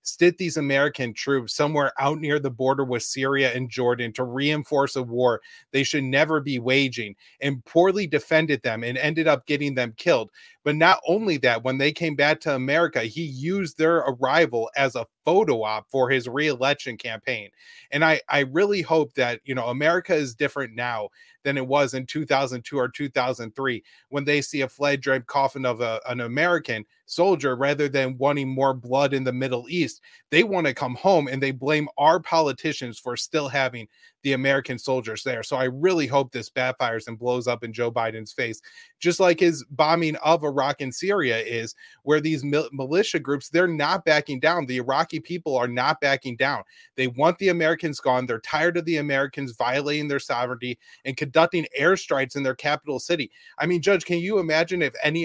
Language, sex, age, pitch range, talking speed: English, male, 30-49, 130-160 Hz, 190 wpm